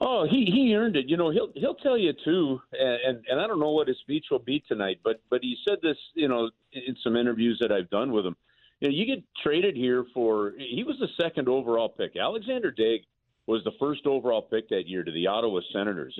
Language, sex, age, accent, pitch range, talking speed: English, male, 50-69, American, 115-155 Hz, 235 wpm